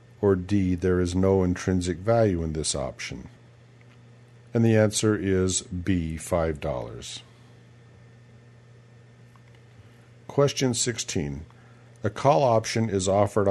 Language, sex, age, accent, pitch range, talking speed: English, male, 50-69, American, 95-120 Hz, 100 wpm